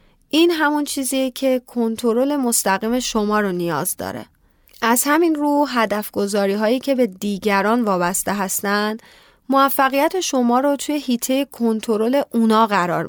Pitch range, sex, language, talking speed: 215-270 Hz, female, Persian, 130 wpm